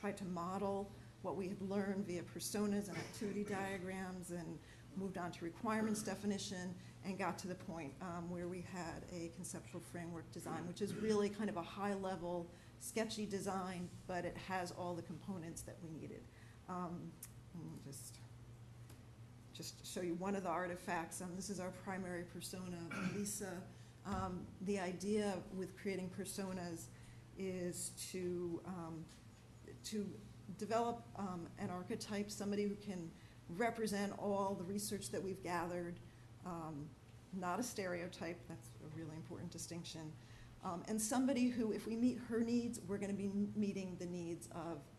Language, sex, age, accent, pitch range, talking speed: English, female, 50-69, American, 160-195 Hz, 155 wpm